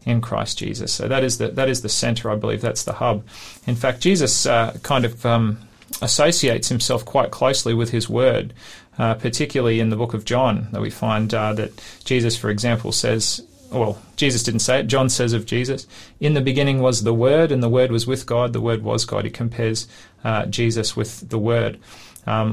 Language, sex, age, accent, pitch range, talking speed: English, male, 30-49, Australian, 110-125 Hz, 210 wpm